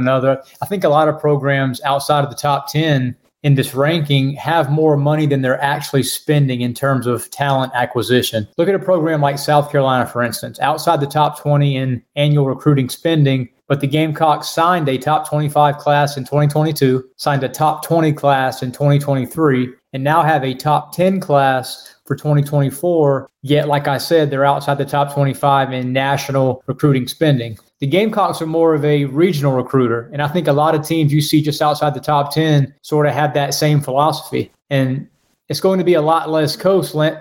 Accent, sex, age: American, male, 30-49